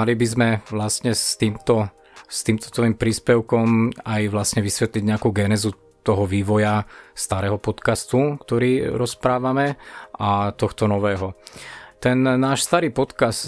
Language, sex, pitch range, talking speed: Slovak, male, 105-115 Hz, 120 wpm